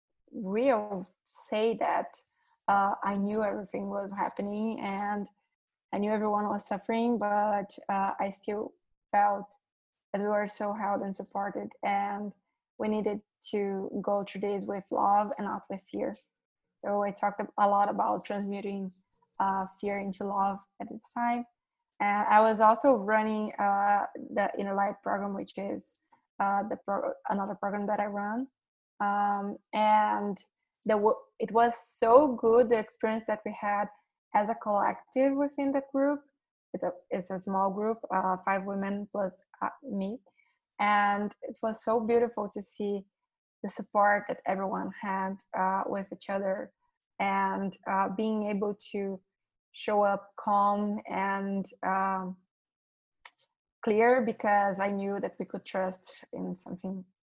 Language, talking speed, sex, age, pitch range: English, 140 wpm, female, 20-39, 195-220 Hz